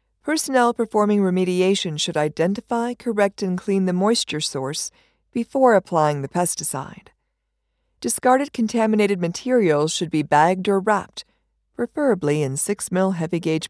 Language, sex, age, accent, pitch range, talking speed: English, female, 50-69, American, 160-225 Hz, 120 wpm